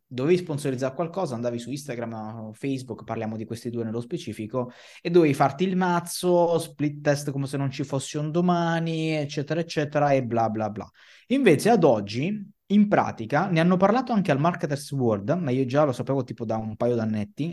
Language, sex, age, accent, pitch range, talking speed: Italian, male, 20-39, native, 120-160 Hz, 190 wpm